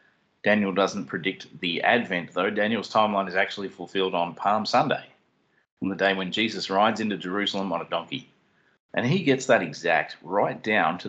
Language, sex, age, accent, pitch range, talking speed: English, male, 40-59, Australian, 90-120 Hz, 180 wpm